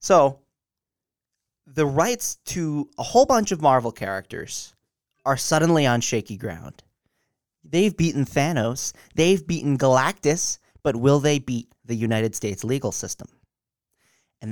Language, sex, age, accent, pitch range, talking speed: English, male, 20-39, American, 120-150 Hz, 130 wpm